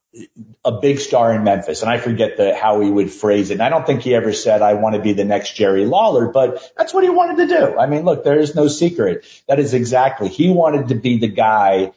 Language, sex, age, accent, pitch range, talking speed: English, male, 40-59, American, 100-130 Hz, 260 wpm